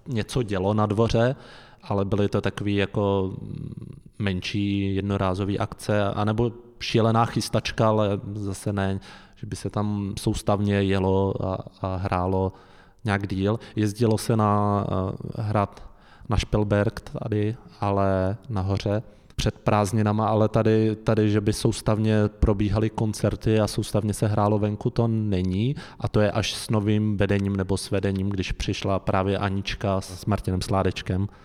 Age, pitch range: 20-39, 100-110 Hz